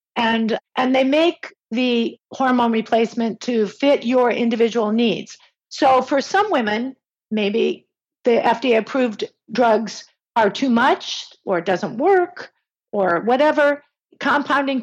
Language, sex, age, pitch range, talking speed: English, female, 50-69, 225-275 Hz, 125 wpm